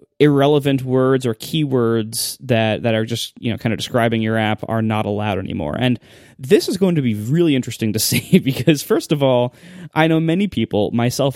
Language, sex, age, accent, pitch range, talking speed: English, male, 20-39, American, 110-140 Hz, 200 wpm